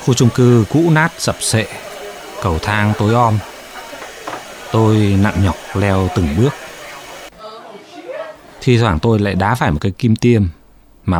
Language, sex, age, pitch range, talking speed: Vietnamese, male, 20-39, 90-120 Hz, 150 wpm